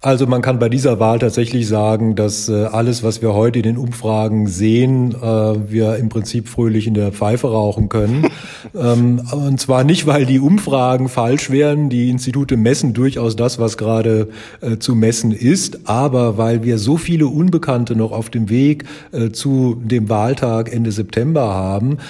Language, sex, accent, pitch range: German, male, German, 110-130 Hz